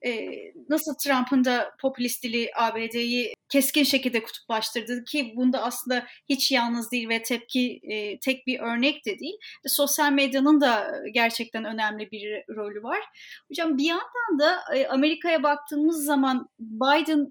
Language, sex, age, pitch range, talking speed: Turkish, female, 30-49, 250-300 Hz, 130 wpm